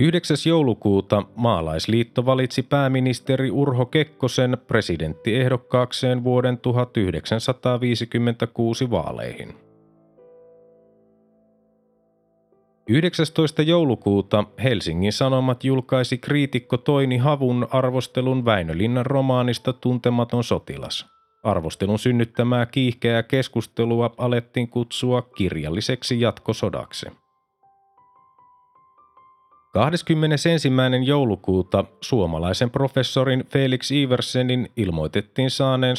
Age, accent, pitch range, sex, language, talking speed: 30-49, native, 110-135 Hz, male, Finnish, 70 wpm